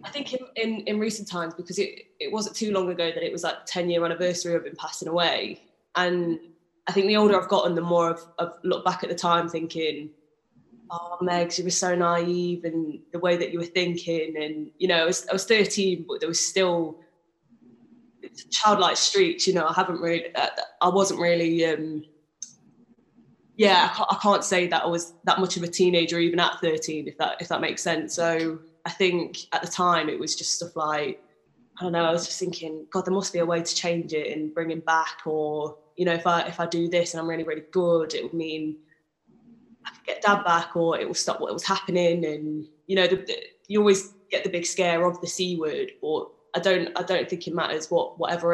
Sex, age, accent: female, 20-39, British